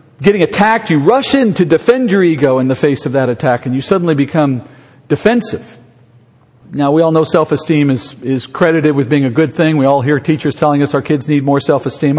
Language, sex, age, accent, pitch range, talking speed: English, male, 50-69, American, 135-170 Hz, 225 wpm